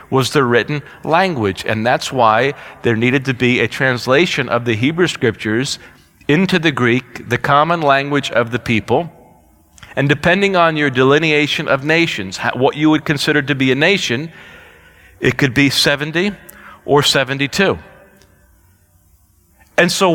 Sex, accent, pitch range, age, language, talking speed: male, American, 130-160 Hz, 40-59, English, 145 wpm